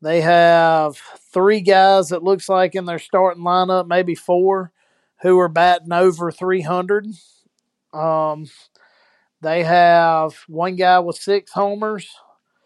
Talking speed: 125 wpm